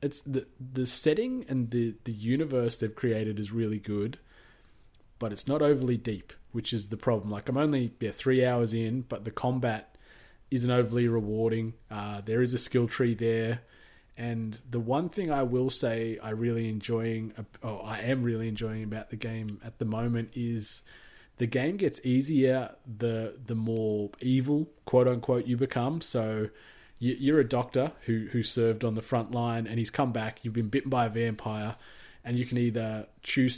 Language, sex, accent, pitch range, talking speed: English, male, Australian, 110-125 Hz, 185 wpm